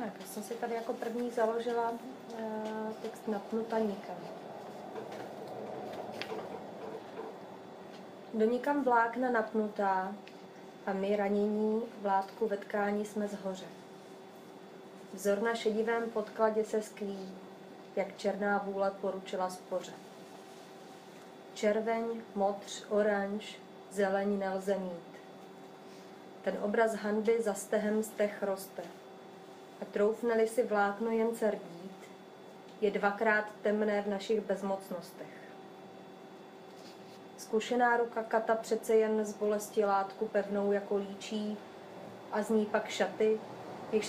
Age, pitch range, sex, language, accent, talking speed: 30-49, 195-220 Hz, female, Czech, native, 100 wpm